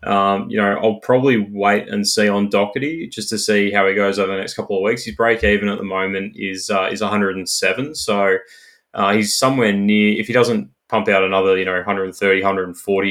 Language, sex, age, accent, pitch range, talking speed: English, male, 20-39, Australian, 95-110 Hz, 215 wpm